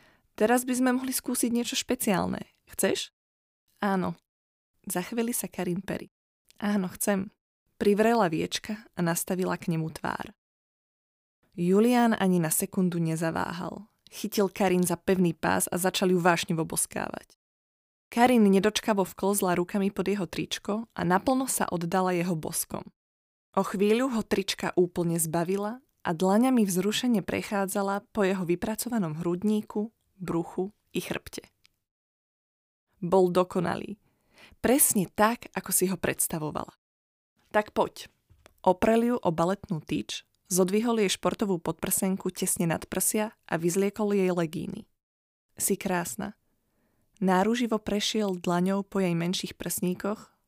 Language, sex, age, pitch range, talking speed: Slovak, female, 20-39, 175-215 Hz, 120 wpm